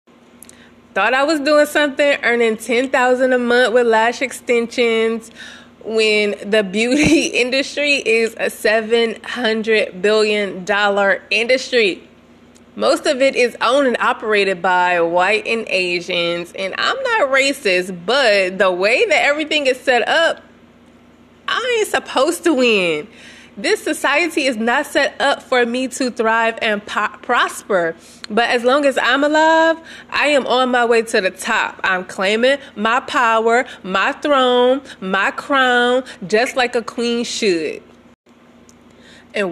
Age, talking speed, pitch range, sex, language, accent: 20-39, 135 wpm, 220-275 Hz, female, English, American